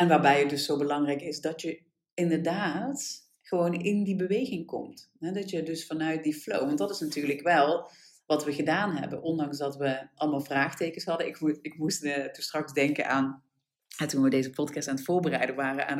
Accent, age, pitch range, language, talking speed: Dutch, 40-59, 150-210 Hz, Dutch, 200 wpm